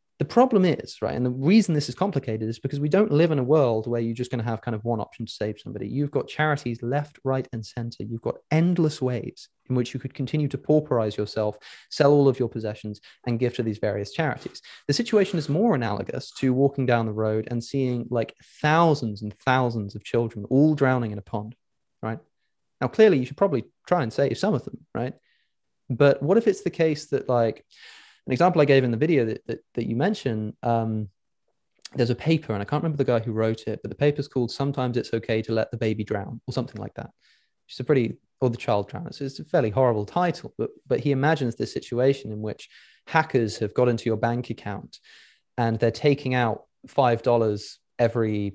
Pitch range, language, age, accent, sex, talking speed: 110-140 Hz, English, 20-39, British, male, 220 wpm